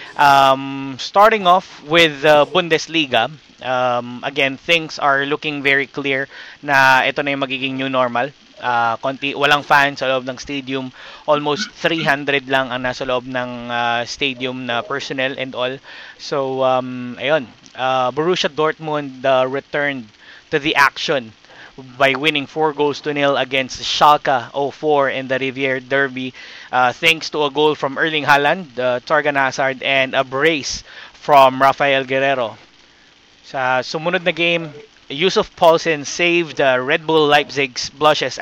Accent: Filipino